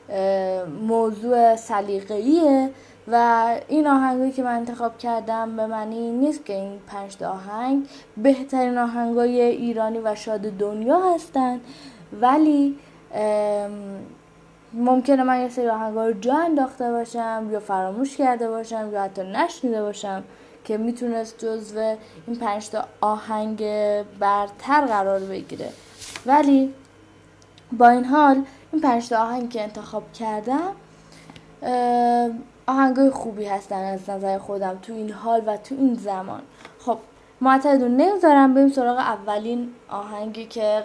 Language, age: Persian, 10-29